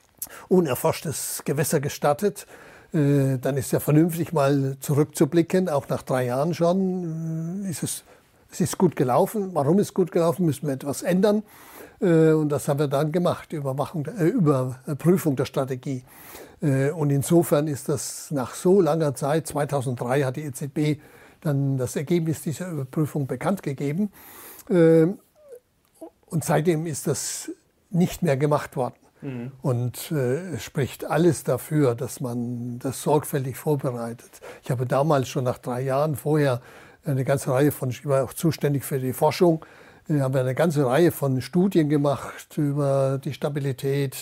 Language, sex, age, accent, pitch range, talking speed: German, male, 60-79, German, 135-165 Hz, 150 wpm